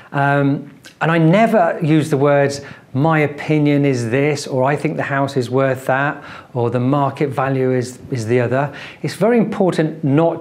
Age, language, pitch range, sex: 40-59, English, 135-170 Hz, male